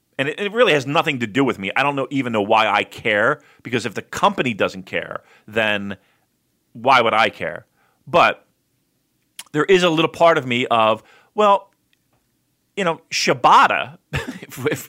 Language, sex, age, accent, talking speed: English, male, 40-59, American, 170 wpm